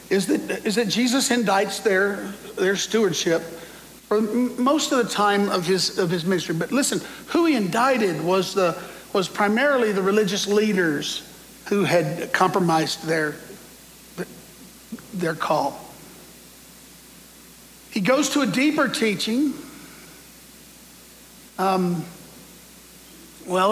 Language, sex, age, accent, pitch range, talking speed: English, male, 60-79, American, 185-225 Hz, 115 wpm